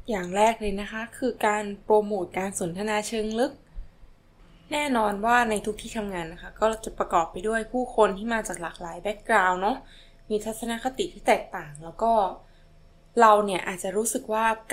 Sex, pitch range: female, 175-220 Hz